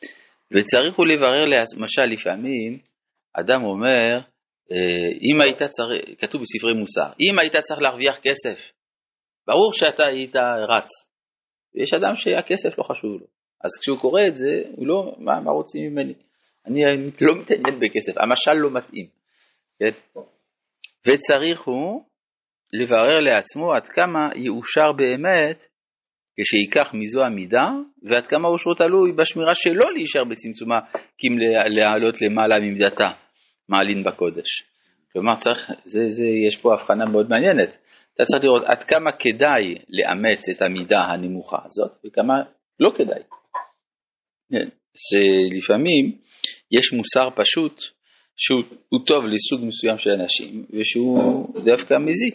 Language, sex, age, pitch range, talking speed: Hebrew, male, 30-49, 110-165 Hz, 115 wpm